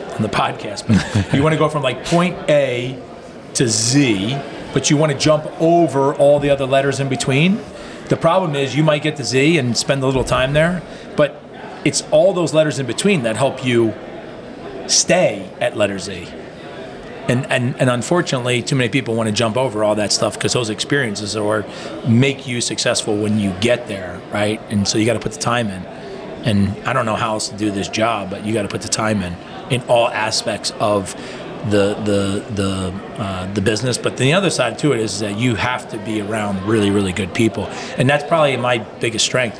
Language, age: English, 30-49